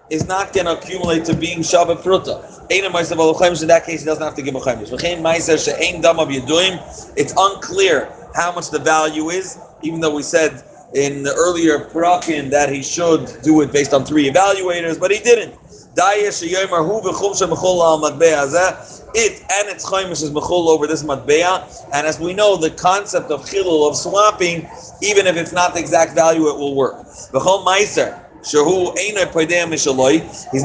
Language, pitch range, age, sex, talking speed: English, 155-190 Hz, 40-59, male, 145 wpm